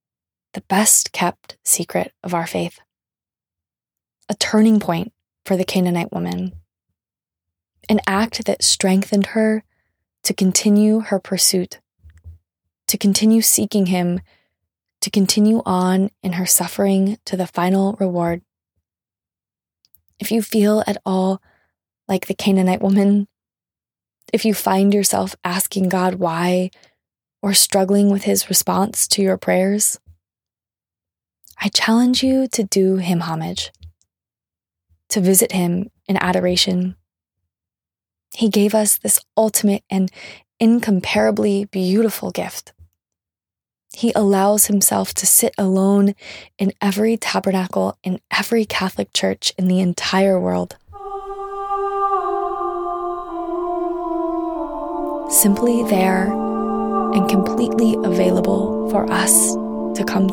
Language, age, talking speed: English, 20-39, 105 wpm